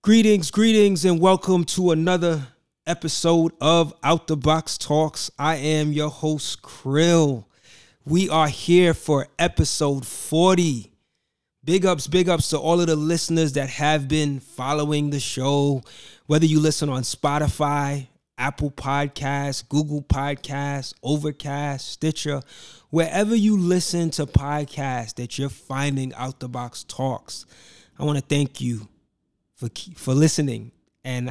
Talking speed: 130 wpm